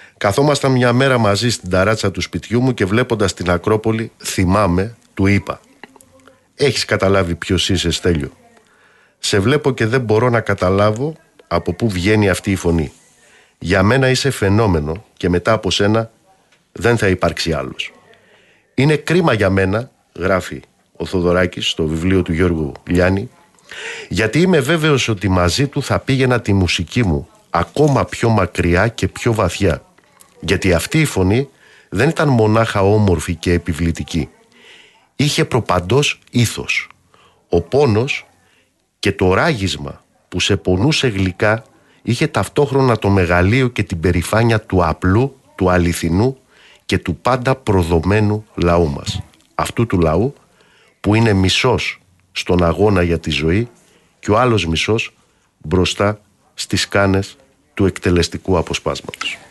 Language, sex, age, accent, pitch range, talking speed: Greek, male, 50-69, native, 90-120 Hz, 135 wpm